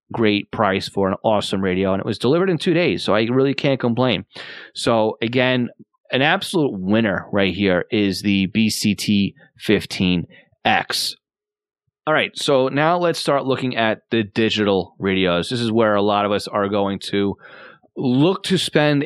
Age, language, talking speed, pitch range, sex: 30-49, English, 165 wpm, 105-130 Hz, male